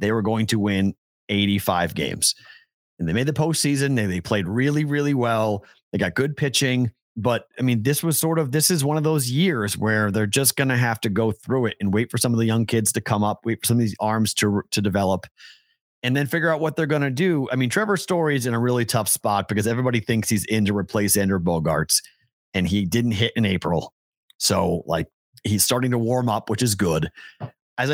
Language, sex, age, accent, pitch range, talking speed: English, male, 30-49, American, 100-130 Hz, 235 wpm